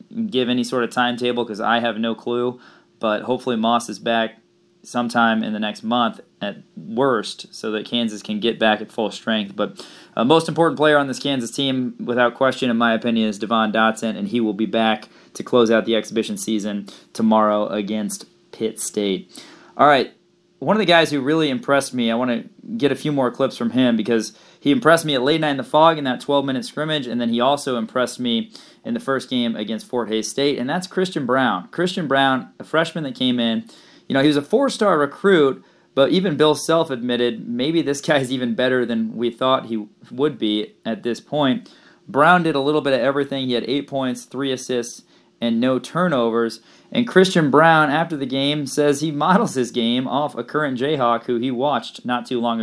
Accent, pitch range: American, 115-150 Hz